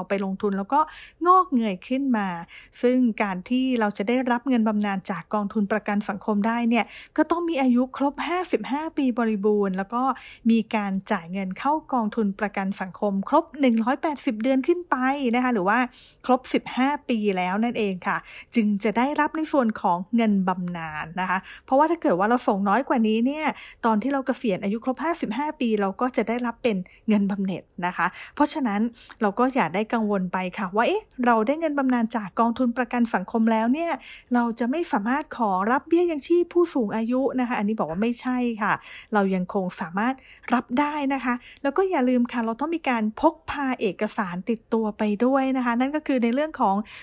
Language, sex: English, female